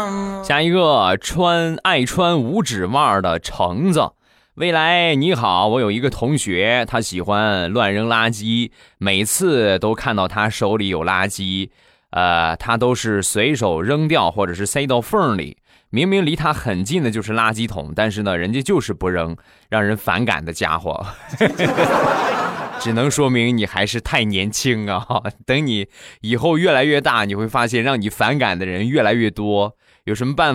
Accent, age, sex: native, 20-39, male